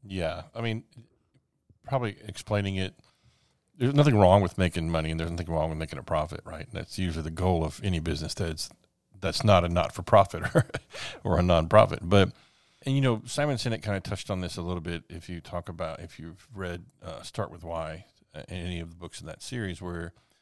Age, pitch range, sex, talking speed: 40-59, 90-115 Hz, male, 210 wpm